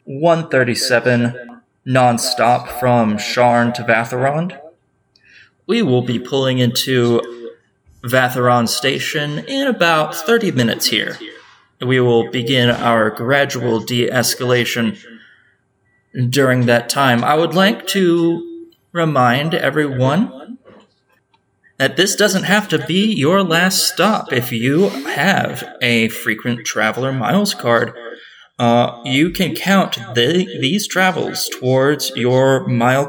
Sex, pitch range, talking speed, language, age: male, 120-155 Hz, 110 wpm, English, 20-39